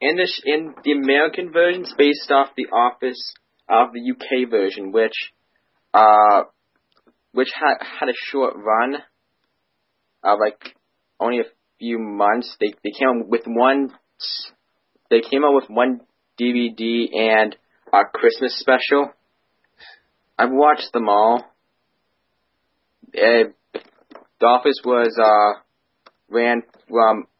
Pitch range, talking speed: 110-130 Hz, 120 wpm